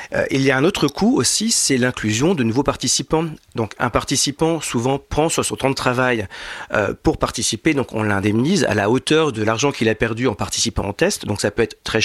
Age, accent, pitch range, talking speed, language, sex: 40-59, French, 110-145 Hz, 230 wpm, French, male